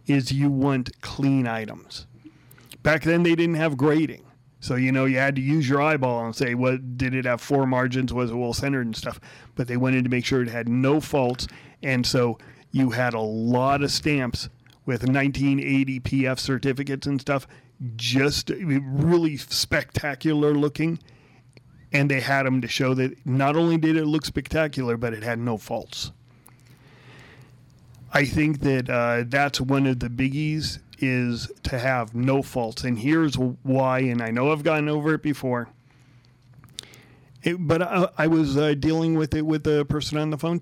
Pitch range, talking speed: 125-145 Hz, 175 wpm